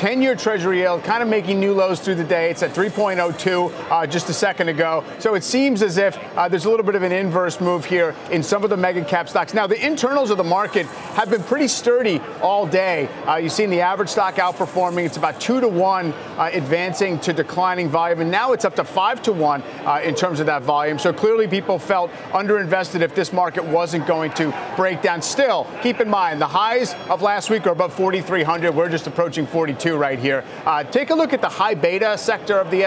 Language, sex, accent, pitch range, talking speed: English, male, American, 170-205 Hz, 225 wpm